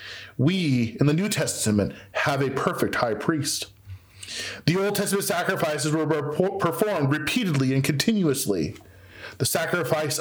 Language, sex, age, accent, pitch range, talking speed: English, male, 40-59, American, 120-180 Hz, 125 wpm